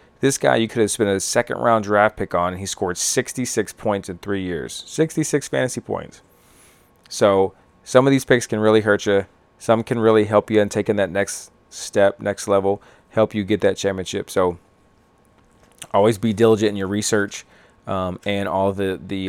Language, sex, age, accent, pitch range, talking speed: English, male, 30-49, American, 100-115 Hz, 185 wpm